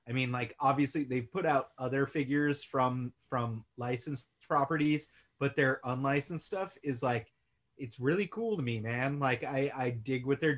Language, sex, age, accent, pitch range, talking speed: English, male, 30-49, American, 120-140 Hz, 175 wpm